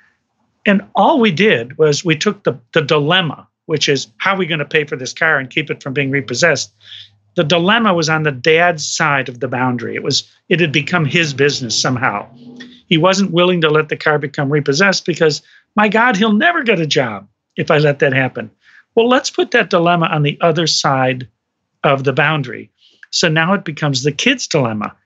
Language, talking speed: English, 205 wpm